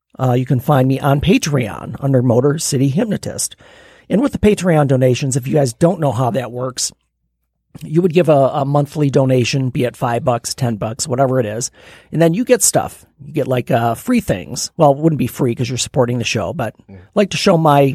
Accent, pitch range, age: American, 125-160 Hz, 40-59